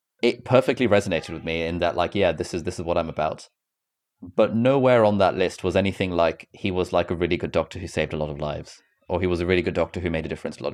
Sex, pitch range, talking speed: male, 85-105 Hz, 280 wpm